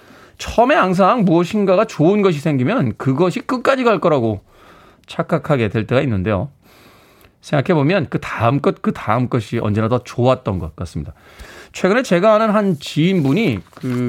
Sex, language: male, Korean